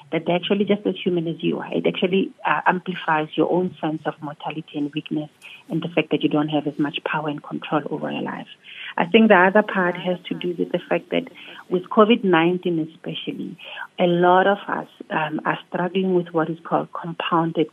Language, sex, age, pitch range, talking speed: German, female, 40-59, 155-180 Hz, 210 wpm